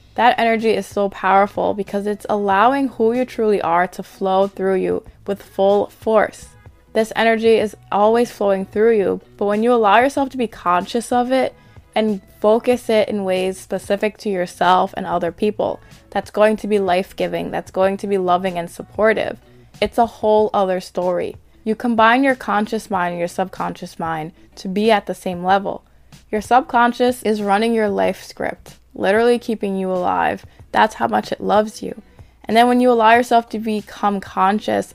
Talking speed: 180 wpm